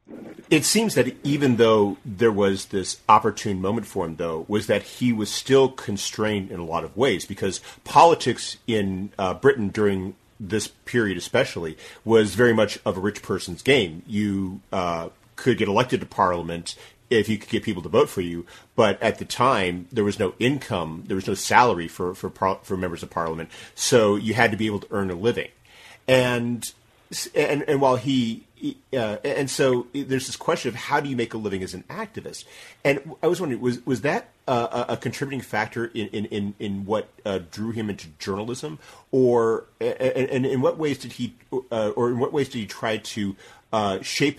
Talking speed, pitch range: 195 wpm, 100-125 Hz